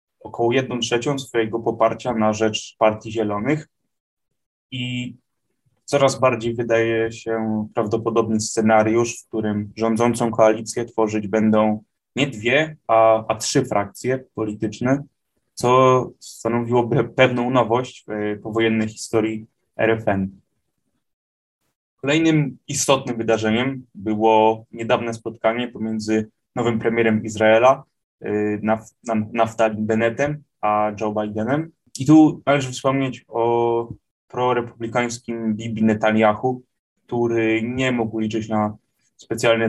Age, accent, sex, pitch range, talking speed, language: 10-29, native, male, 110-125 Hz, 100 wpm, Polish